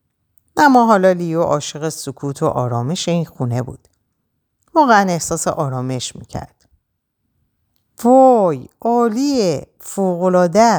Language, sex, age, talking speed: Persian, female, 50-69, 95 wpm